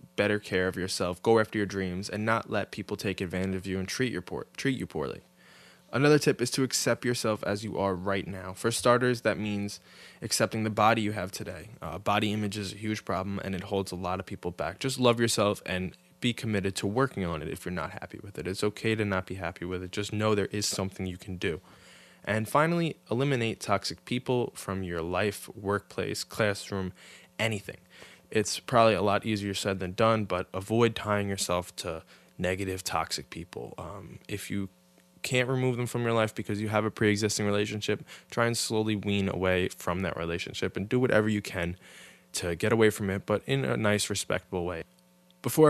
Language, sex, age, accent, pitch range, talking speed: English, male, 20-39, American, 95-110 Hz, 205 wpm